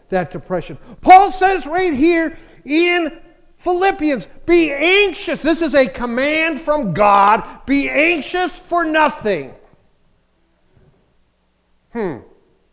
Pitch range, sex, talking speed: 190-295 Hz, male, 100 wpm